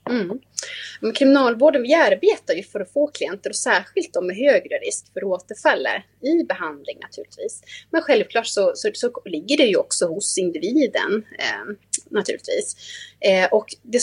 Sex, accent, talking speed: female, native, 155 wpm